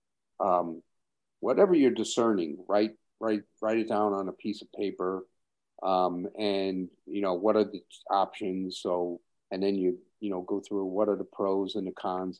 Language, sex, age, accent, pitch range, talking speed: English, male, 50-69, American, 90-105 Hz, 180 wpm